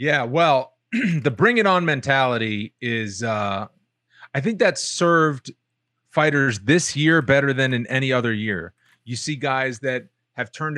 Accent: American